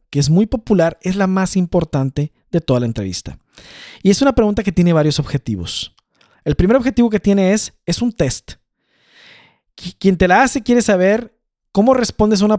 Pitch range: 170-225 Hz